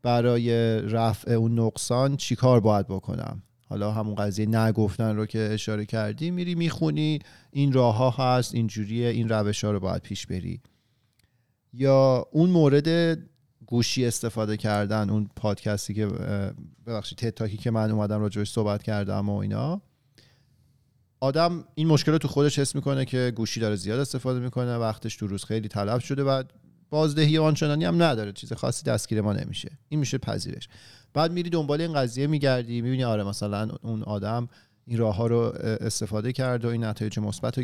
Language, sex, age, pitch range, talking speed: Persian, male, 40-59, 110-135 Hz, 165 wpm